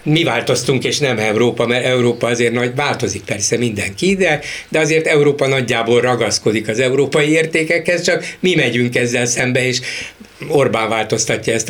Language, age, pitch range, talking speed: Hungarian, 60-79, 115-150 Hz, 155 wpm